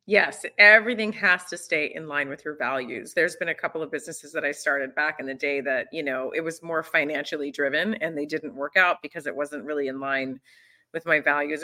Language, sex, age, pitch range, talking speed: English, female, 30-49, 150-200 Hz, 230 wpm